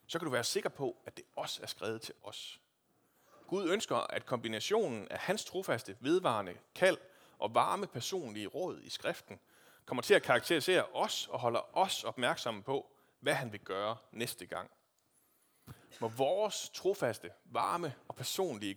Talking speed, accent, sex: 160 wpm, native, male